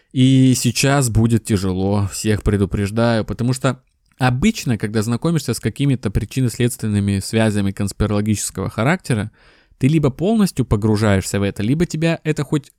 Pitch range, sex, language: 105-135 Hz, male, Russian